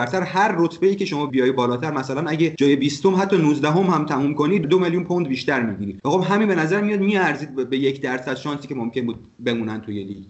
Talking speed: 220 wpm